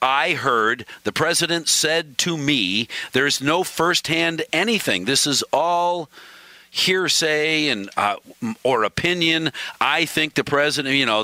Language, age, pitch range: English, 50-69, 115-155 Hz